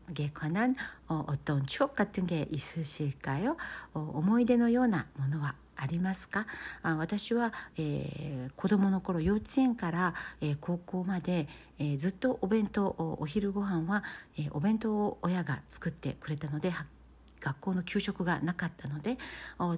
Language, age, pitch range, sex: Korean, 60-79, 155-210 Hz, female